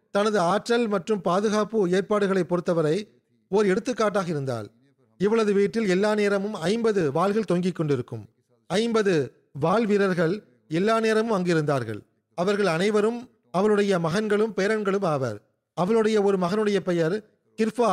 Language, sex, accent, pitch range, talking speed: Tamil, male, native, 175-215 Hz, 105 wpm